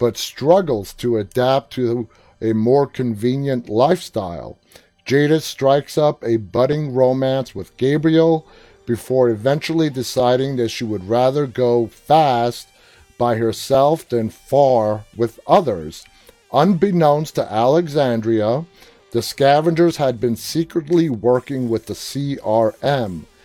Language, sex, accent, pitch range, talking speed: English, male, American, 115-150 Hz, 115 wpm